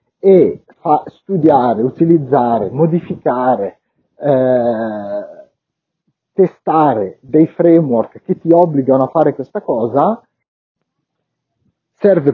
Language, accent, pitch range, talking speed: Italian, native, 120-175 Hz, 80 wpm